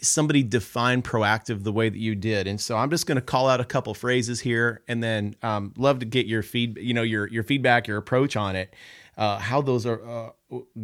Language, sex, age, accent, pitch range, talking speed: English, male, 30-49, American, 105-130 Hz, 240 wpm